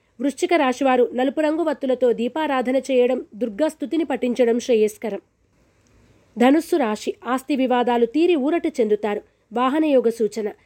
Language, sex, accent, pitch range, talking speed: Telugu, female, native, 230-290 Hz, 105 wpm